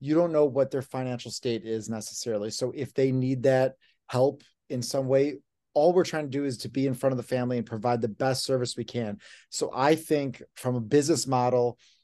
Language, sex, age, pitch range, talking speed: English, male, 30-49, 125-155 Hz, 225 wpm